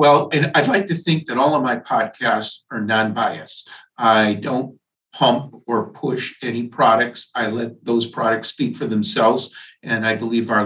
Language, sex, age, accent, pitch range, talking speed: English, male, 50-69, American, 115-130 Hz, 175 wpm